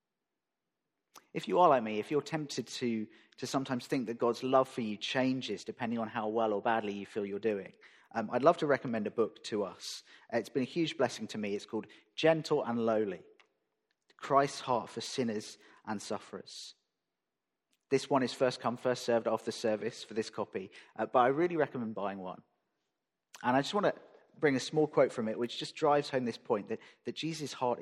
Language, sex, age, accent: English, male, 40-59, British